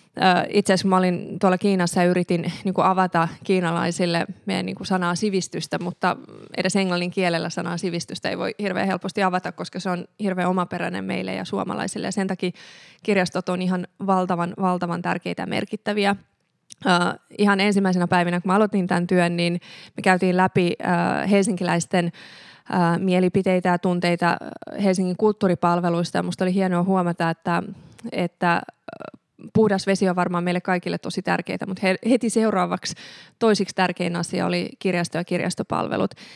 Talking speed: 140 wpm